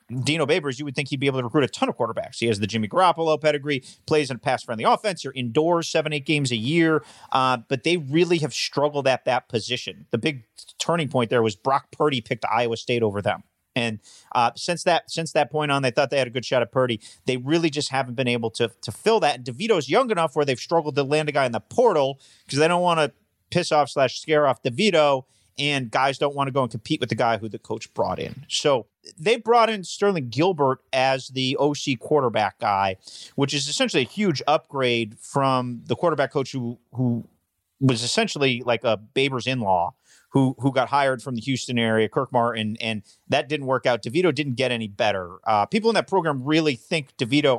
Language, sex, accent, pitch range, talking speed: English, male, American, 120-155 Hz, 230 wpm